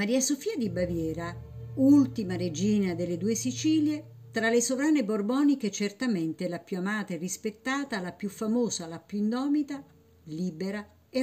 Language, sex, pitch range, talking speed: Italian, female, 160-225 Hz, 145 wpm